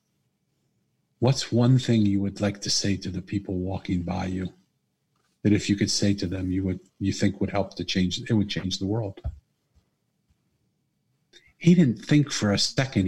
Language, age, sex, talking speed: English, 50-69, male, 185 wpm